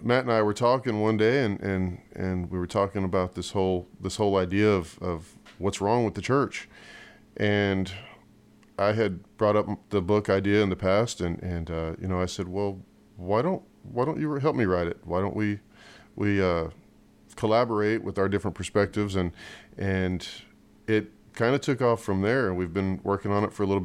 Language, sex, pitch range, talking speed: English, male, 90-110 Hz, 205 wpm